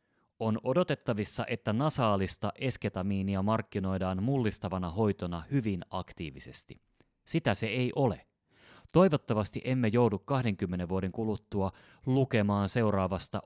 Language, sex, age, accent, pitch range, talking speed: Finnish, male, 30-49, native, 100-130 Hz, 100 wpm